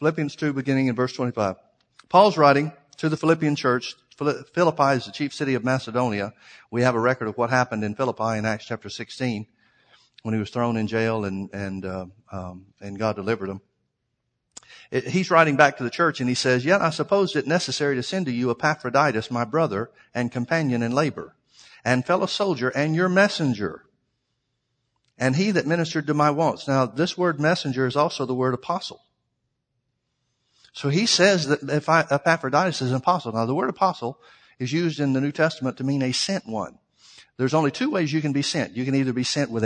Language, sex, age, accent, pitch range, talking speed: English, male, 50-69, American, 120-150 Hz, 200 wpm